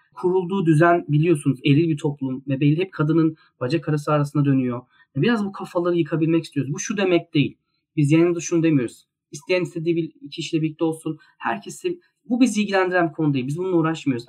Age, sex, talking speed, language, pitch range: 40-59, male, 170 wpm, Turkish, 145-175 Hz